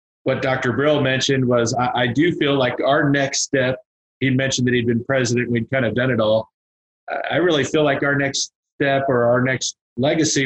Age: 30-49